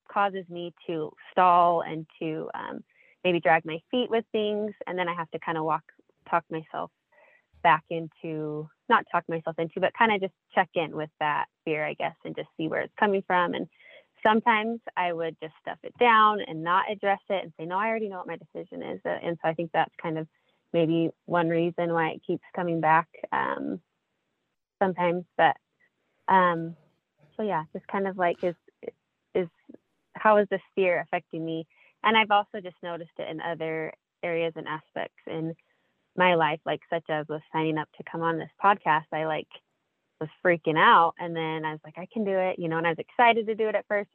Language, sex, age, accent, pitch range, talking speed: English, female, 20-39, American, 160-195 Hz, 205 wpm